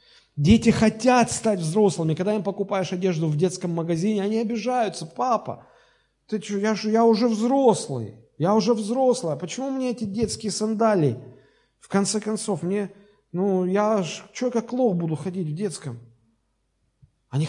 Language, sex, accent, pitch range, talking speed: Russian, male, native, 130-195 Hz, 155 wpm